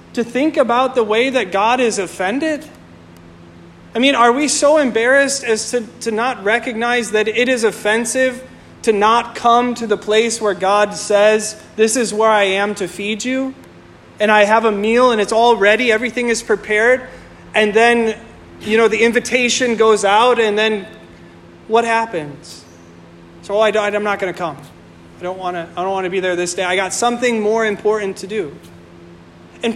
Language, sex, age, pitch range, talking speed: English, male, 30-49, 180-245 Hz, 180 wpm